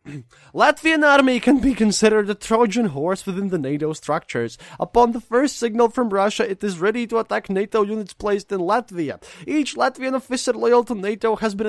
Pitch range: 140-220 Hz